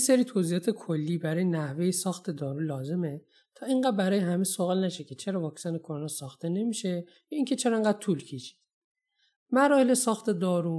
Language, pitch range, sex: Persian, 155-215 Hz, male